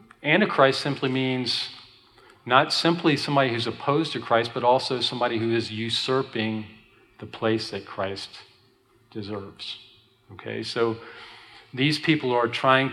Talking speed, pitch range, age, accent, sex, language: 125 wpm, 110-130 Hz, 40-59, American, male, English